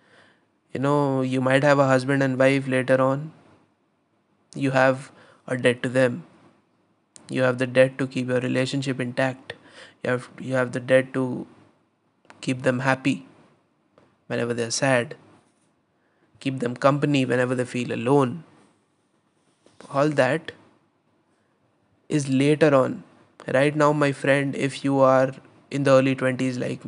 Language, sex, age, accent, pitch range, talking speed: Hindi, male, 20-39, native, 130-140 Hz, 140 wpm